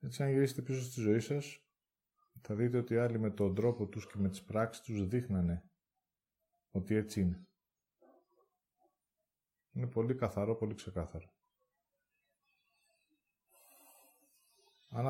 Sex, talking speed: male, 120 wpm